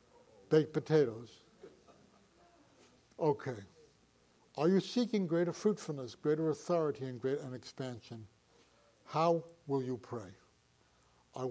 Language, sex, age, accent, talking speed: English, male, 60-79, American, 95 wpm